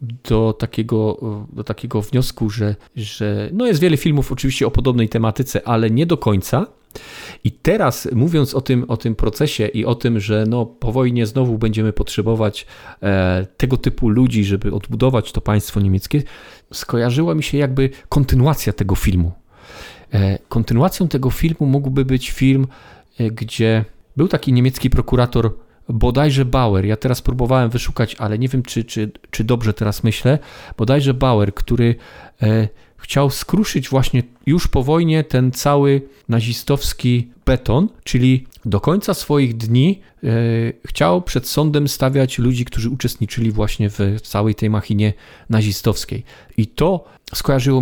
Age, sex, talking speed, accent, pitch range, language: 40-59, male, 135 wpm, native, 110-135 Hz, Polish